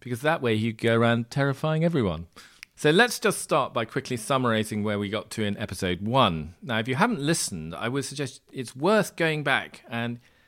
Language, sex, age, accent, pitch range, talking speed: English, male, 40-59, British, 105-135 Hz, 200 wpm